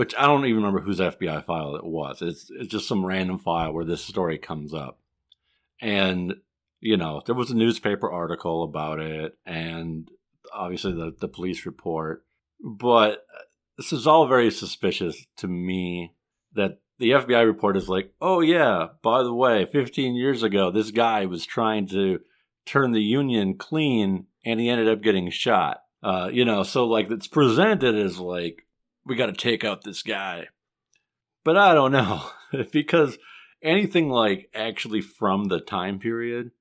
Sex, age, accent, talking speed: male, 50-69, American, 165 wpm